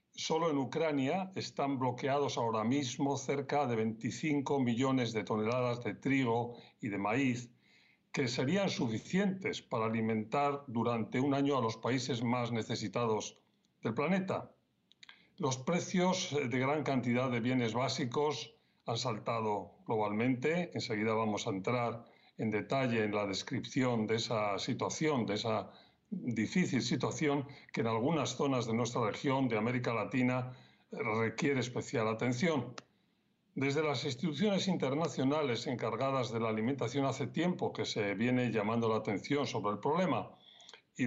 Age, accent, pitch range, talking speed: 40-59, Spanish, 115-140 Hz, 135 wpm